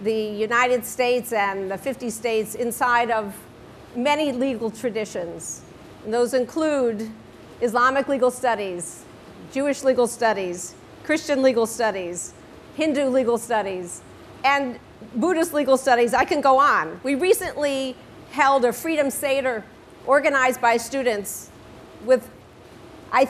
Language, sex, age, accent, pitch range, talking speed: English, female, 50-69, American, 225-275 Hz, 120 wpm